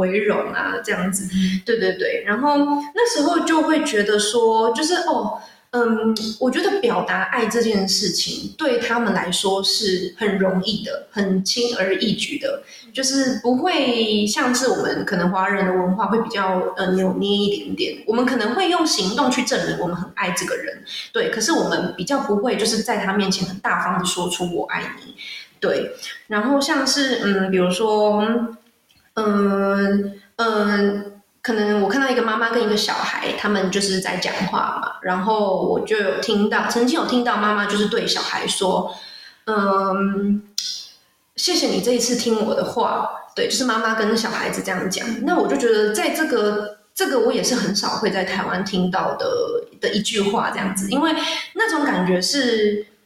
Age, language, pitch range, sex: 20-39, English, 200-260 Hz, female